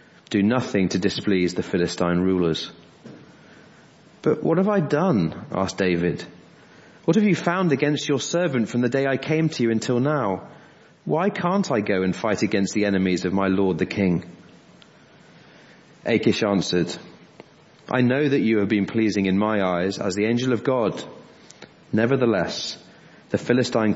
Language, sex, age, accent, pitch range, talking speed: English, male, 30-49, British, 90-115 Hz, 160 wpm